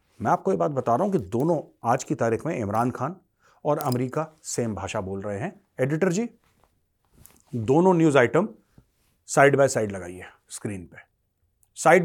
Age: 40-59